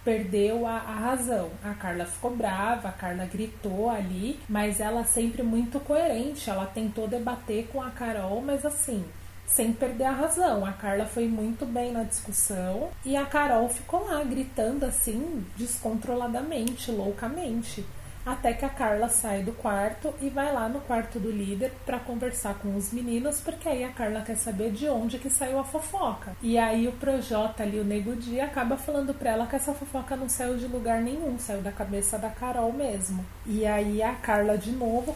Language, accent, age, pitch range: Portuguese, Brazilian, 30-49, 210-265 Hz